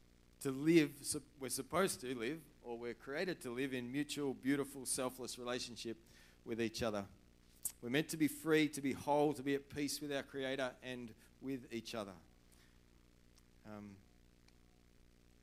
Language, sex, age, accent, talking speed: English, male, 40-59, Australian, 150 wpm